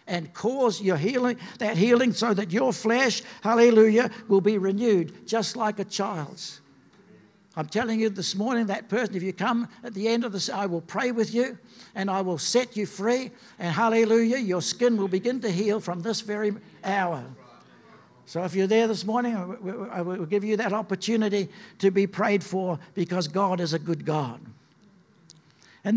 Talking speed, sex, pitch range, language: 185 wpm, male, 180-235 Hz, English